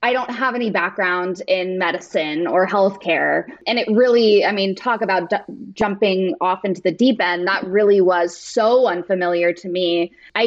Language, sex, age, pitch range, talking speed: English, female, 20-39, 185-235 Hz, 180 wpm